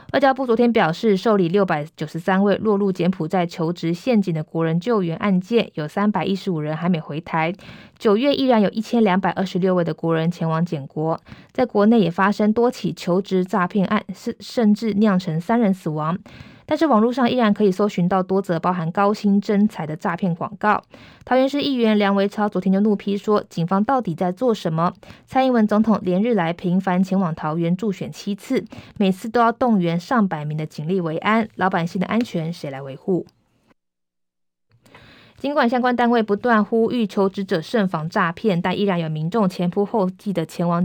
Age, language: 20-39, Chinese